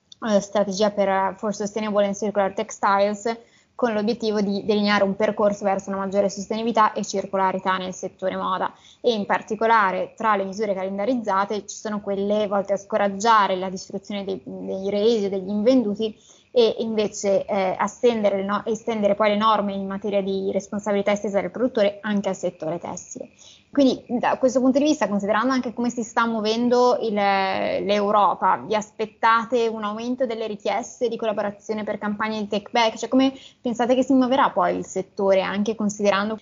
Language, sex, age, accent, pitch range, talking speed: Italian, female, 20-39, native, 195-225 Hz, 165 wpm